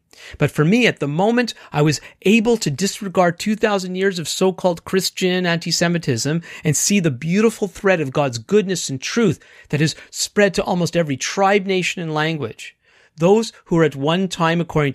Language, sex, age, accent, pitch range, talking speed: English, male, 40-59, American, 145-205 Hz, 175 wpm